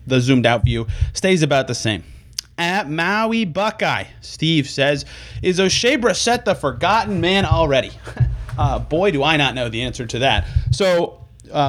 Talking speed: 160 wpm